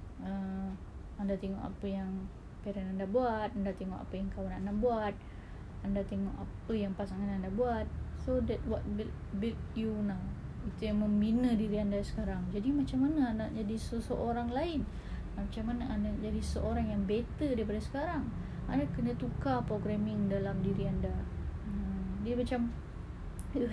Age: 20-39